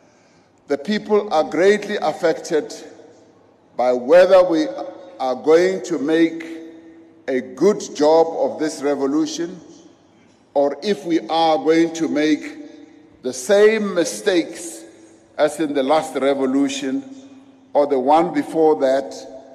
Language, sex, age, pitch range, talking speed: English, male, 50-69, 145-200 Hz, 115 wpm